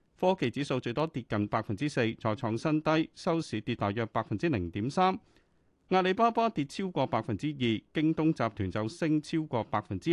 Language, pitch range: Chinese, 105-155 Hz